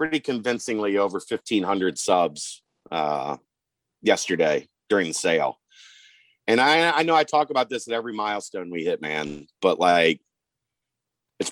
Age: 40-59